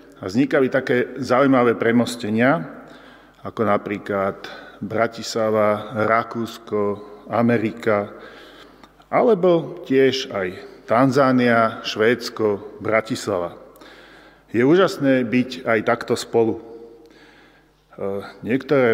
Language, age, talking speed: Slovak, 40-59, 75 wpm